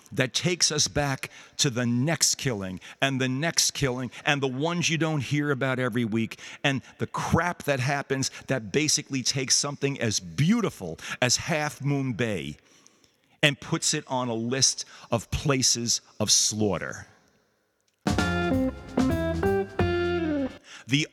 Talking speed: 135 wpm